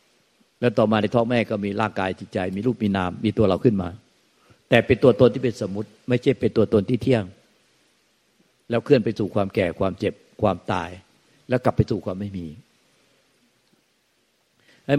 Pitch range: 95-115 Hz